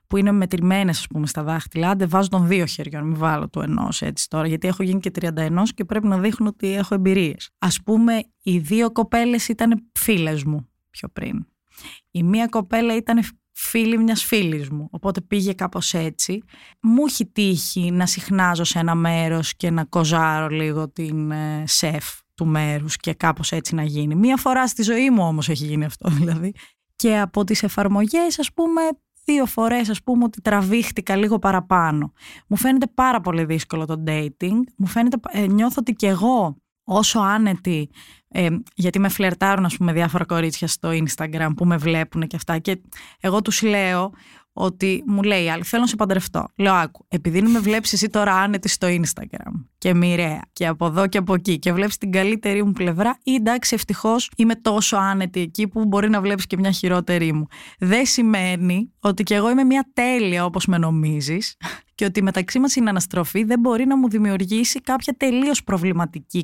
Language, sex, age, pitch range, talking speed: Greek, female, 20-39, 170-220 Hz, 180 wpm